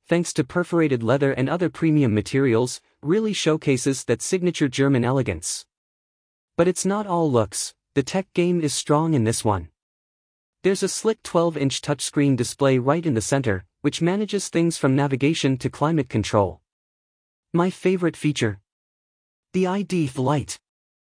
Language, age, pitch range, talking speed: English, 30-49, 120-165 Hz, 145 wpm